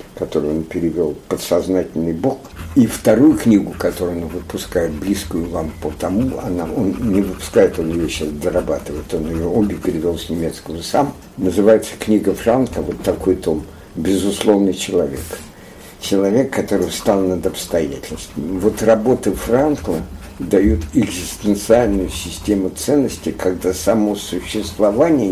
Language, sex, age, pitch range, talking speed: Russian, male, 60-79, 90-105 Hz, 125 wpm